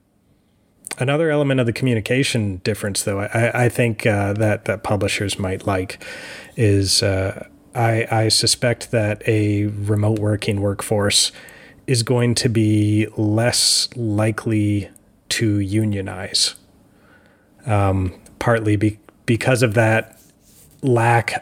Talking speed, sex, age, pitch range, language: 110 wpm, male, 30-49, 100-120 Hz, English